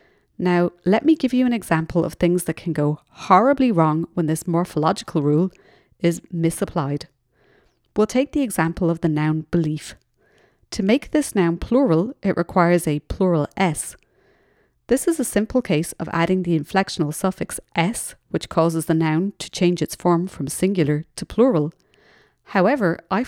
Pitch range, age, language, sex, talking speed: 160-195 Hz, 30-49, English, female, 160 wpm